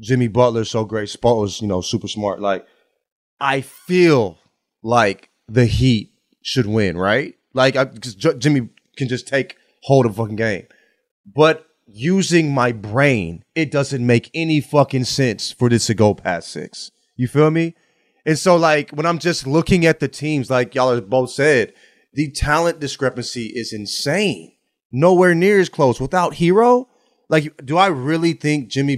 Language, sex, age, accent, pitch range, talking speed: English, male, 30-49, American, 115-160 Hz, 170 wpm